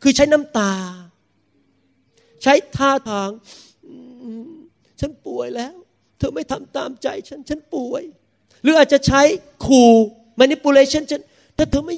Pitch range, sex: 190-280 Hz, male